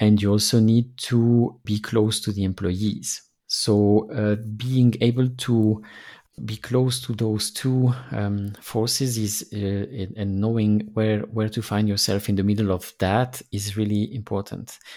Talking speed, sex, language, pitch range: 150 wpm, male, English, 100-110 Hz